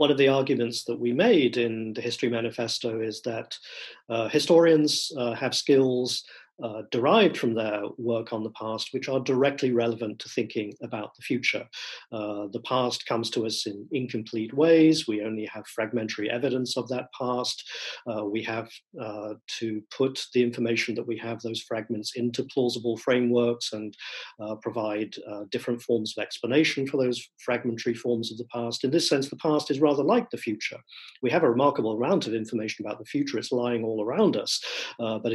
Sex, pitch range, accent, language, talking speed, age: male, 110-125 Hz, British, English, 185 wpm, 40-59